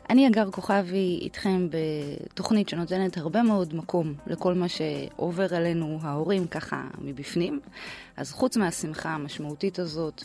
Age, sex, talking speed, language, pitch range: 20-39, female, 125 wpm, Hebrew, 150-190 Hz